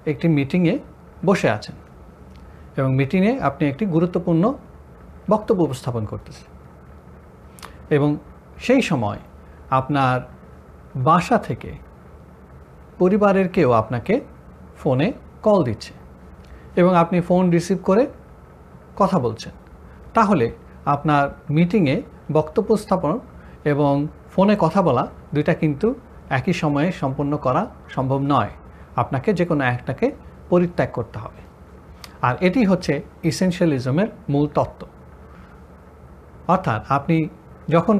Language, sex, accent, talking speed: Bengali, male, native, 105 wpm